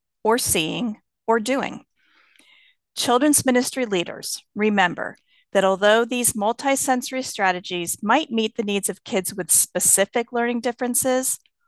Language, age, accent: English, 40-59, American